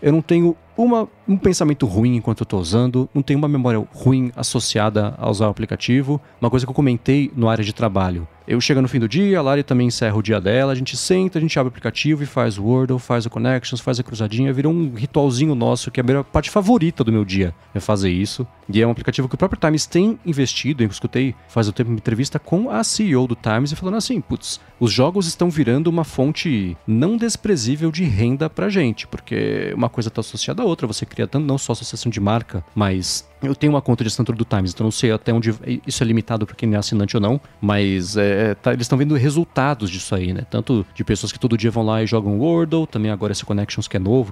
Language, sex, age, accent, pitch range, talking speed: Portuguese, male, 30-49, Brazilian, 110-150 Hz, 245 wpm